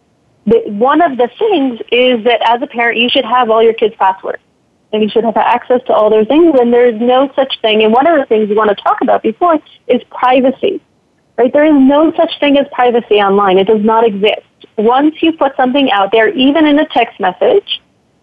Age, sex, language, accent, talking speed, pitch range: 30-49, female, English, American, 225 wpm, 215-260 Hz